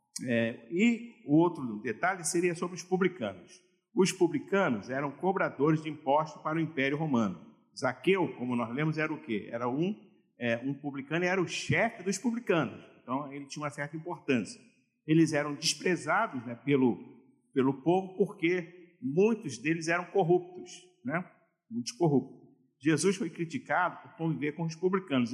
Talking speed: 145 wpm